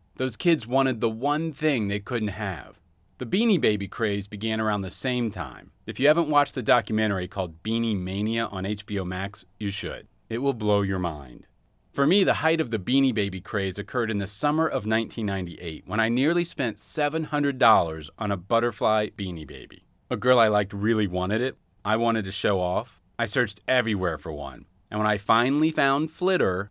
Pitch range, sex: 95-135 Hz, male